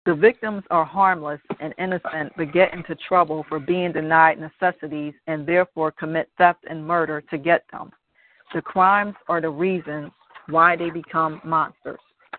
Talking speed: 155 wpm